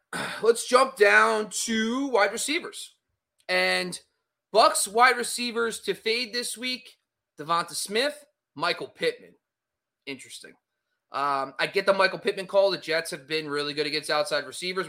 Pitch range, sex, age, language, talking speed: 150-210 Hz, male, 30-49, English, 140 wpm